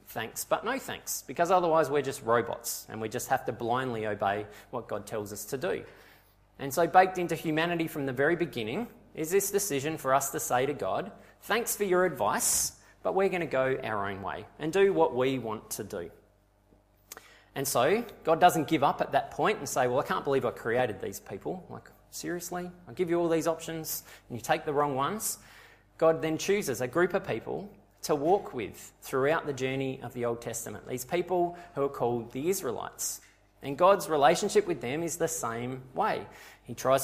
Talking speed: 205 wpm